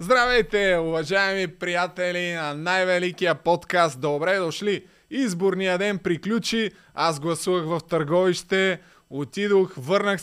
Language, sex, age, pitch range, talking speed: Bulgarian, male, 20-39, 165-200 Hz, 100 wpm